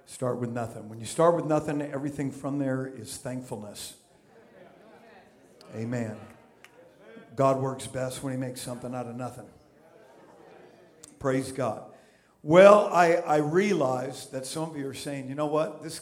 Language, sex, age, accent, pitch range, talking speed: English, male, 50-69, American, 125-145 Hz, 150 wpm